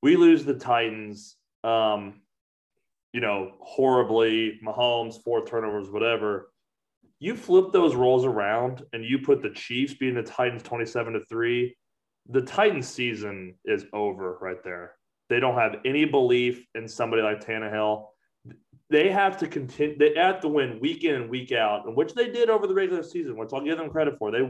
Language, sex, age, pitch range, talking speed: English, male, 30-49, 115-160 Hz, 175 wpm